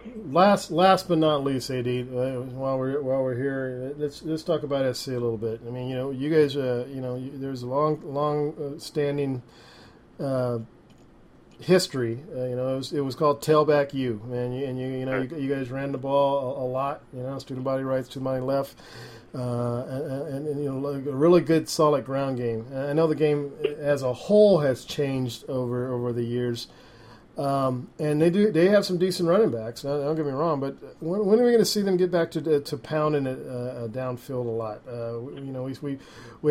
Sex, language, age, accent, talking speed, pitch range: male, English, 40-59, American, 220 wpm, 125-155 Hz